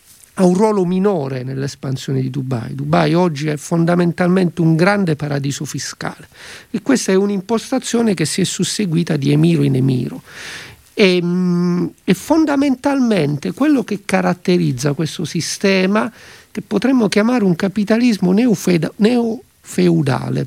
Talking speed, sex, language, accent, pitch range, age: 120 wpm, male, Italian, native, 155-220 Hz, 50-69